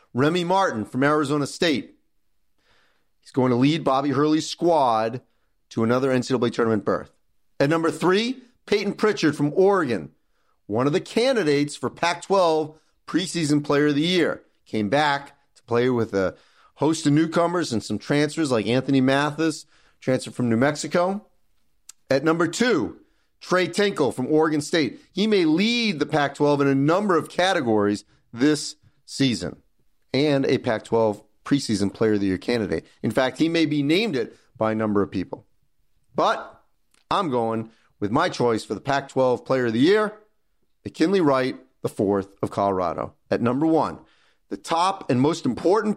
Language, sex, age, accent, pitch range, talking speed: English, male, 40-59, American, 120-170 Hz, 160 wpm